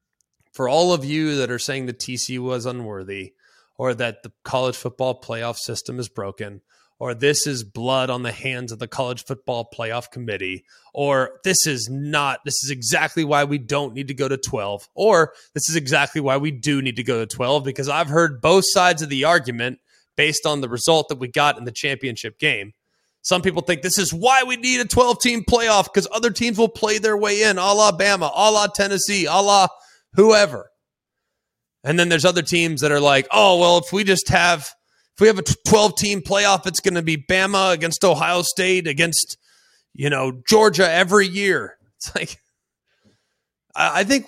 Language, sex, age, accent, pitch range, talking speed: English, male, 20-39, American, 125-185 Hz, 195 wpm